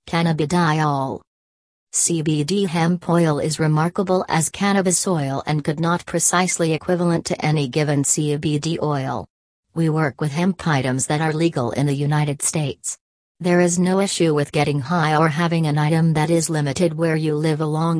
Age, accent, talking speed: 40-59, American, 165 wpm